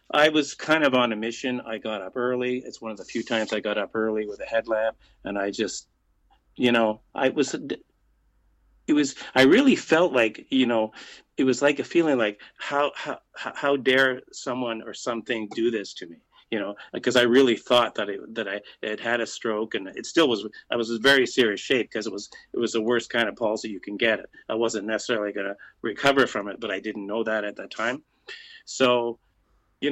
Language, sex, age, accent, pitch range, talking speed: English, male, 40-59, American, 110-130 Hz, 225 wpm